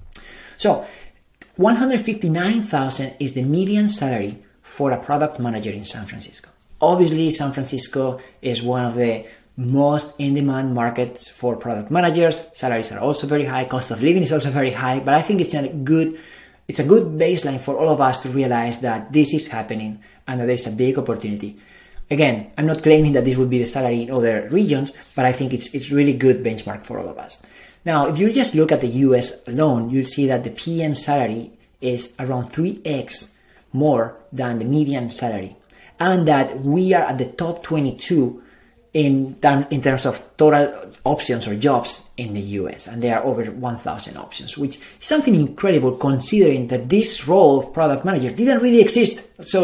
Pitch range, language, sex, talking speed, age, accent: 125-155 Hz, English, male, 185 wpm, 30-49, Spanish